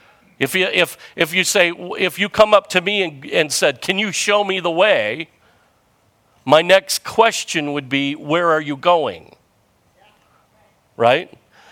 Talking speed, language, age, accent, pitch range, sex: 160 wpm, English, 50-69, American, 165-210 Hz, male